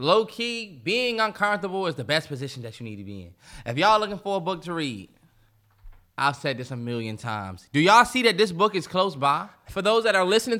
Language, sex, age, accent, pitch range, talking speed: English, male, 10-29, American, 120-185 Hz, 230 wpm